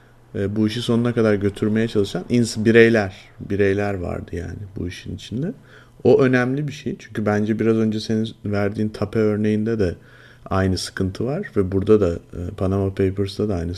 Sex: male